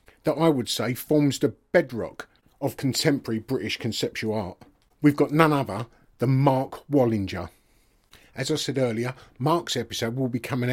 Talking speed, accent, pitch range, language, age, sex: 155 wpm, British, 115-150 Hz, English, 40-59, male